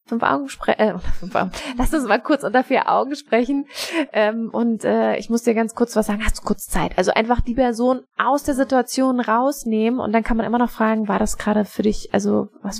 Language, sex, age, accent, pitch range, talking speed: German, female, 20-39, German, 205-235 Hz, 225 wpm